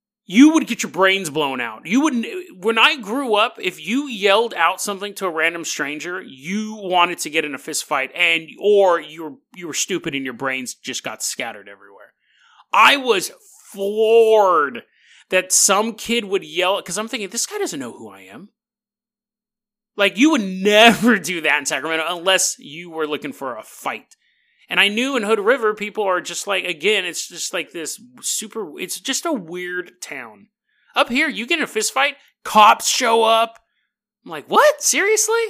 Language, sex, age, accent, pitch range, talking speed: English, male, 30-49, American, 180-255 Hz, 190 wpm